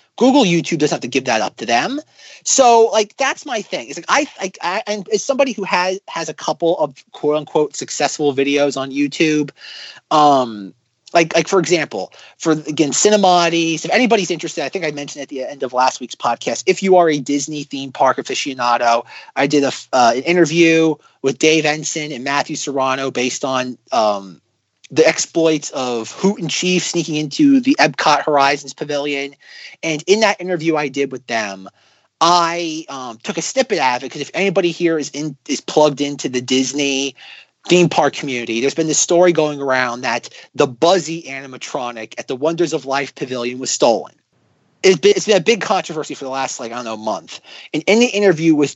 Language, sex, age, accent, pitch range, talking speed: English, male, 30-49, American, 135-175 Hz, 200 wpm